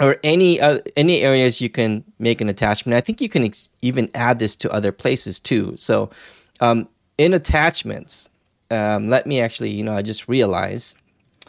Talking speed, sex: 185 wpm, male